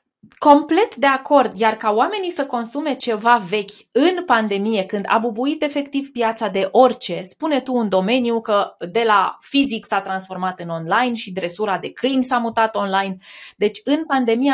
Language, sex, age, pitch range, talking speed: Romanian, female, 20-39, 210-280 Hz, 170 wpm